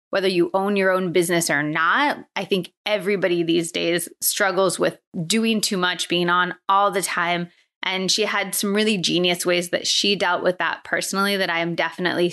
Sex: female